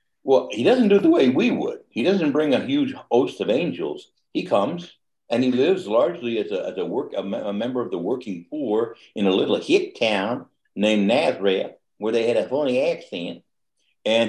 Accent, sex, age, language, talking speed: American, male, 60-79, English, 200 wpm